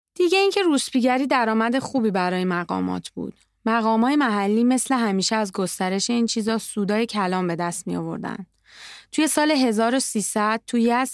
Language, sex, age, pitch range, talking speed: Persian, female, 20-39, 195-270 Hz, 145 wpm